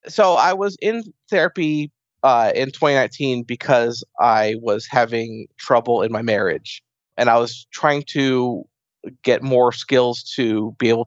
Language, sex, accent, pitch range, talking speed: English, male, American, 115-145 Hz, 145 wpm